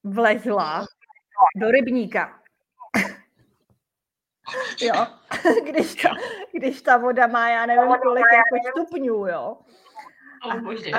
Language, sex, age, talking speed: Czech, female, 30-49, 95 wpm